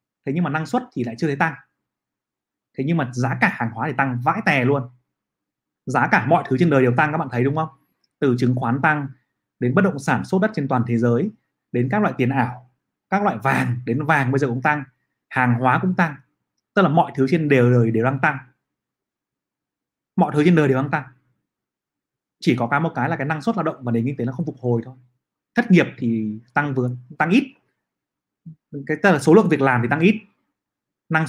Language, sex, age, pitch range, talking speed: Vietnamese, male, 20-39, 125-160 Hz, 230 wpm